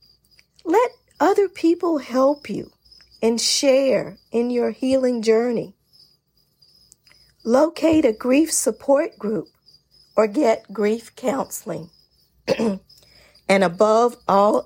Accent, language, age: American, English, 50-69